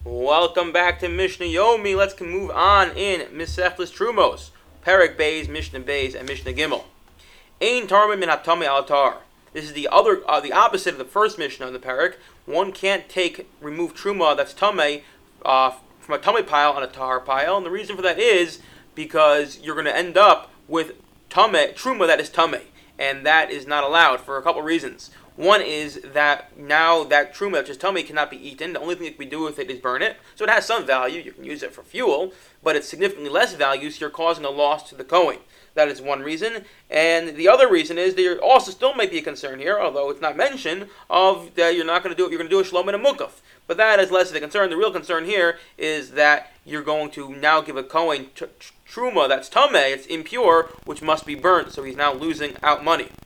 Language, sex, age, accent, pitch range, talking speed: English, male, 30-49, American, 150-195 Hz, 225 wpm